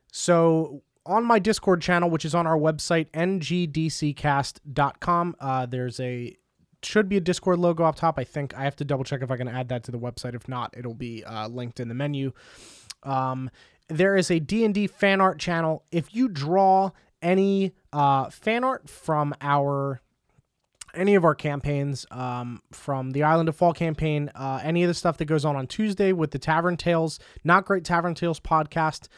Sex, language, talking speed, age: male, English, 195 wpm, 20-39